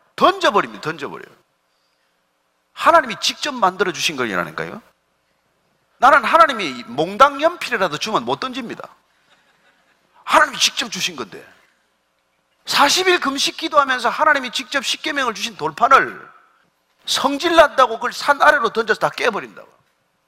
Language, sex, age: Korean, male, 40-59